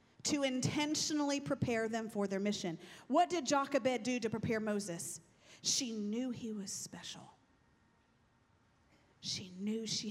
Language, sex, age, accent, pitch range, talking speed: English, female, 40-59, American, 180-260 Hz, 130 wpm